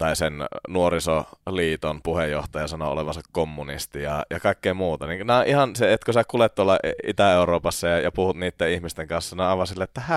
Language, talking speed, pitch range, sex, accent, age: Finnish, 190 wpm, 80-105 Hz, male, native, 30-49